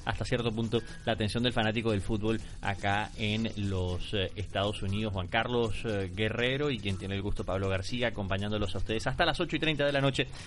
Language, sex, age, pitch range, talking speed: Spanish, male, 30-49, 105-140 Hz, 205 wpm